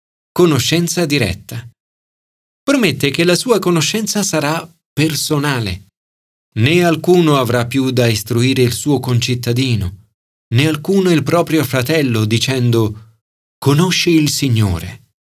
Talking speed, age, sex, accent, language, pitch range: 105 wpm, 40-59, male, native, Italian, 110-170 Hz